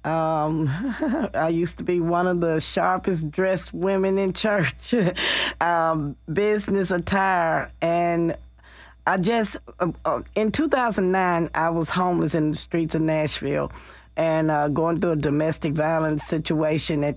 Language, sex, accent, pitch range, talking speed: English, female, American, 150-175 Hz, 135 wpm